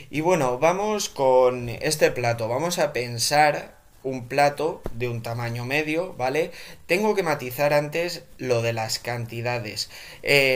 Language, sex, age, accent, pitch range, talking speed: Spanish, male, 20-39, Spanish, 115-145 Hz, 140 wpm